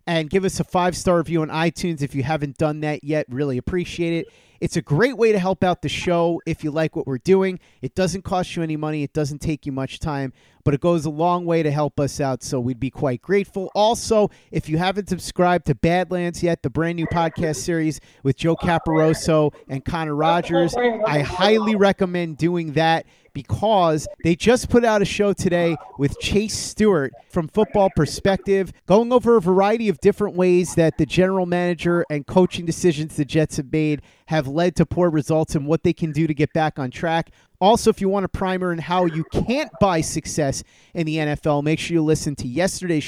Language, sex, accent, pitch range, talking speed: English, male, American, 145-180 Hz, 210 wpm